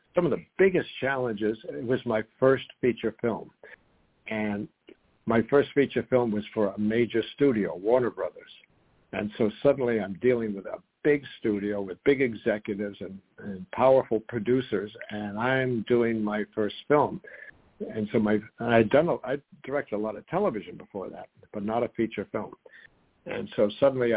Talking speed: 165 wpm